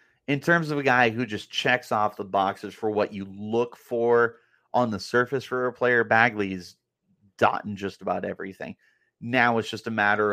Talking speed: 185 wpm